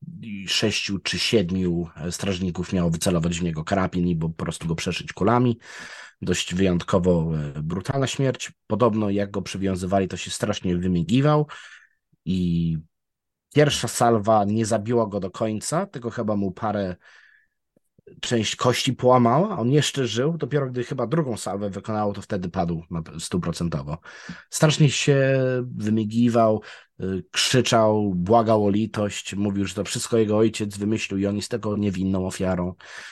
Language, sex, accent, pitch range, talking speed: Polish, male, native, 90-120 Hz, 140 wpm